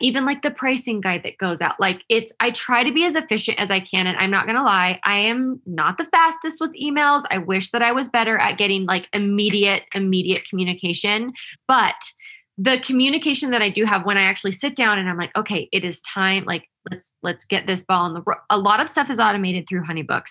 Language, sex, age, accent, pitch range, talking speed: English, female, 20-39, American, 185-245 Hz, 235 wpm